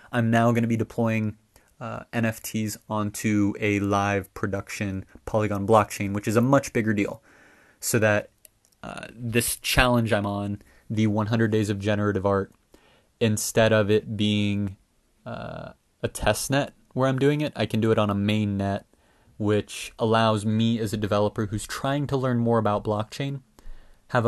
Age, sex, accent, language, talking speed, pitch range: 20-39, male, American, English, 165 wpm, 105-115 Hz